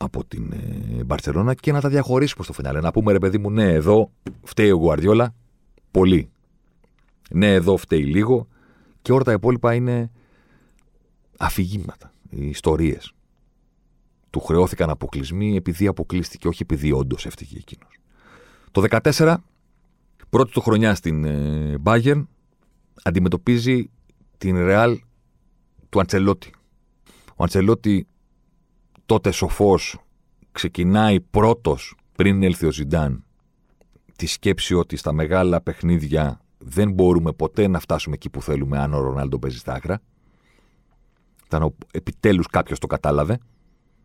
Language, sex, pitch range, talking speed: Greek, male, 85-110 Hz, 120 wpm